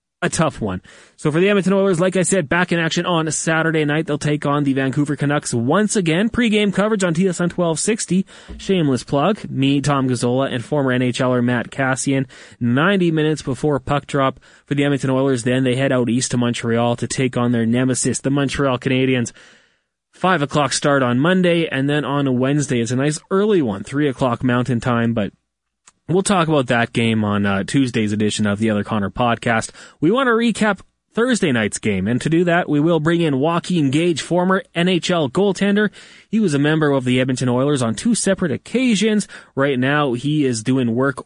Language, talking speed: English, 200 wpm